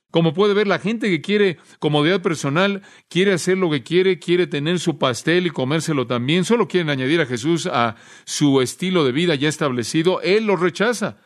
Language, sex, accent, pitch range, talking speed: Spanish, male, Mexican, 140-185 Hz, 190 wpm